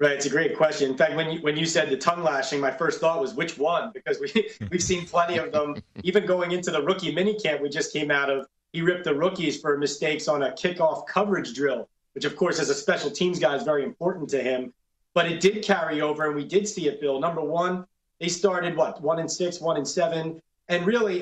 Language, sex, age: English, male, 30-49